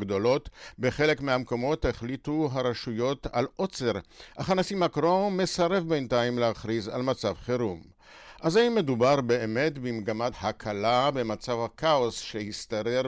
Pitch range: 110-145 Hz